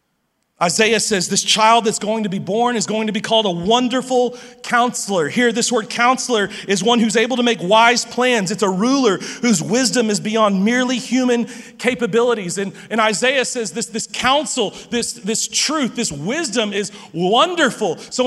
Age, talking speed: 30-49, 175 wpm